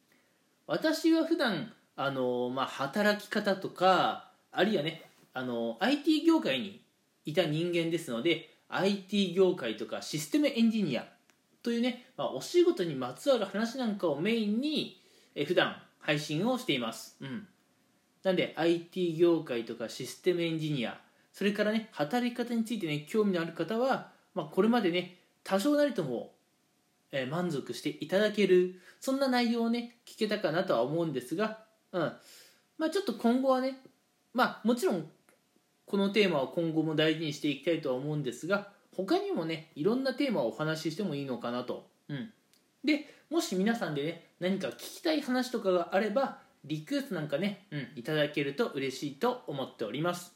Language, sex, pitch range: Japanese, male, 160-240 Hz